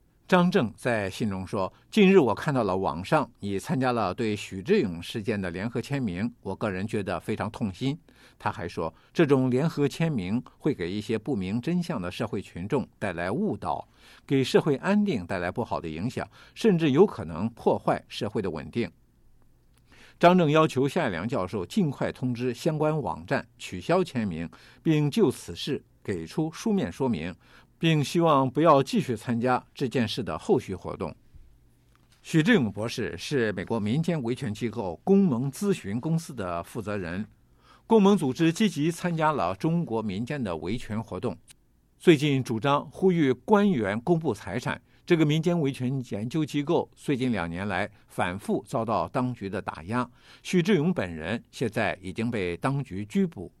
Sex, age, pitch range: male, 50-69, 110-165 Hz